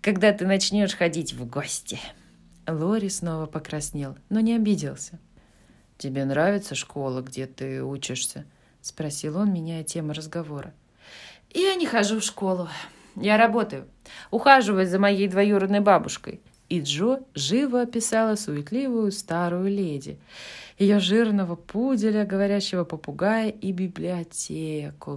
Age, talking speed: 20-39, 115 wpm